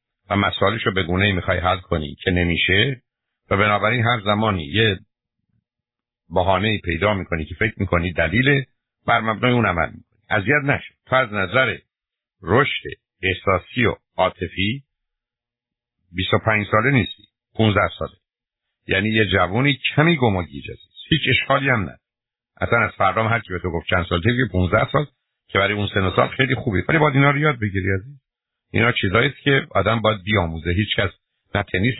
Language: Persian